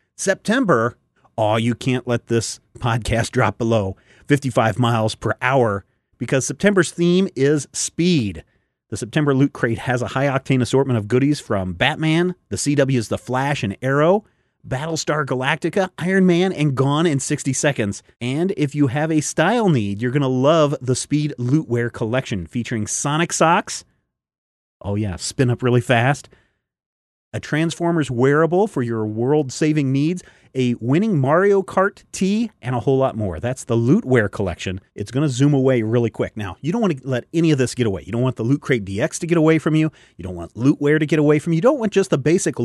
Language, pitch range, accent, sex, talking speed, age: English, 115-155 Hz, American, male, 190 wpm, 30-49